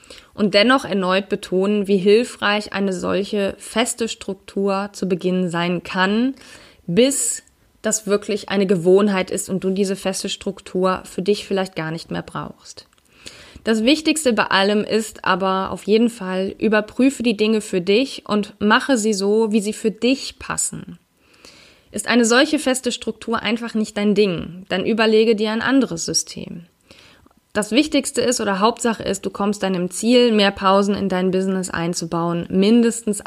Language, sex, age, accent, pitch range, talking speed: German, female, 20-39, German, 185-225 Hz, 155 wpm